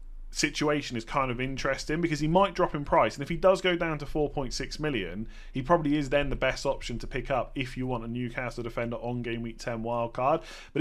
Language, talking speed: English, 240 wpm